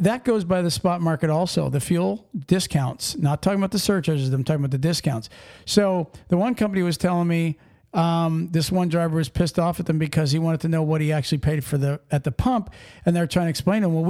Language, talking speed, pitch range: English, 245 wpm, 160-195 Hz